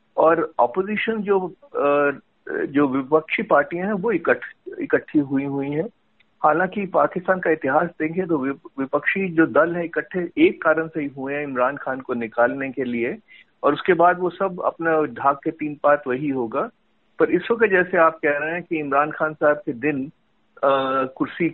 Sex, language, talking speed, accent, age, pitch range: male, Hindi, 180 wpm, native, 50-69, 145-190 Hz